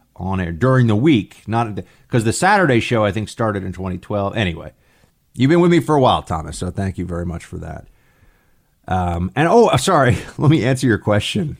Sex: male